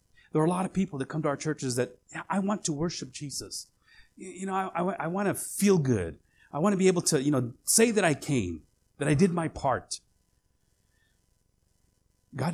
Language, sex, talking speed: English, male, 200 wpm